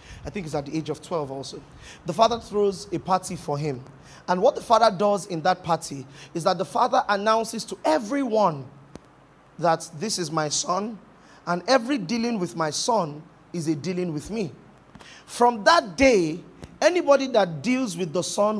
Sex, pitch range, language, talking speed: male, 160-225 Hz, English, 180 wpm